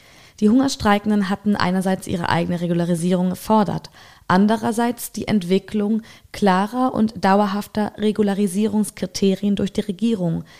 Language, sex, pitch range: German, female, 185-220 Hz